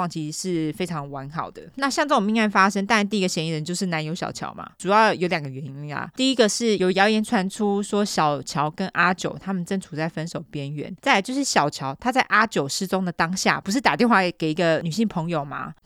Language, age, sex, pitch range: Chinese, 20-39, female, 155-205 Hz